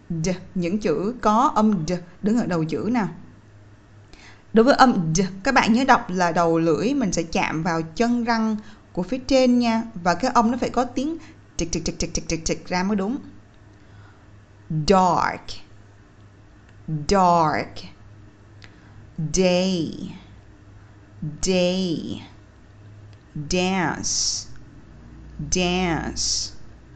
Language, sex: Vietnamese, female